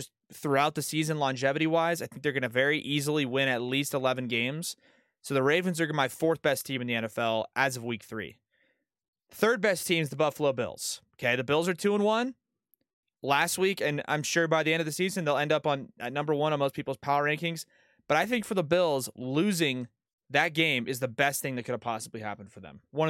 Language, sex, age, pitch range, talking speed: English, male, 20-39, 135-190 Hz, 235 wpm